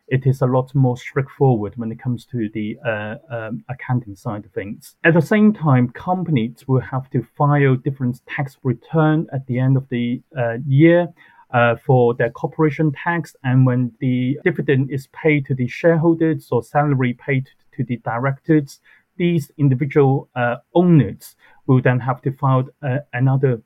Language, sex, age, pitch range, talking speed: English, male, 30-49, 125-150 Hz, 165 wpm